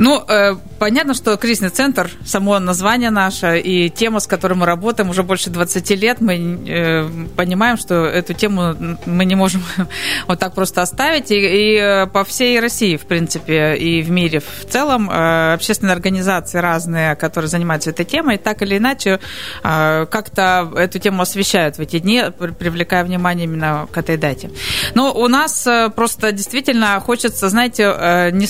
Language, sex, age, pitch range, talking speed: Russian, female, 20-39, 175-220 Hz, 155 wpm